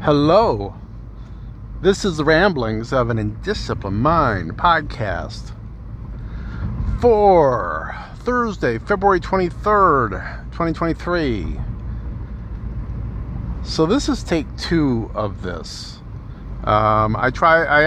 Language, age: English, 50-69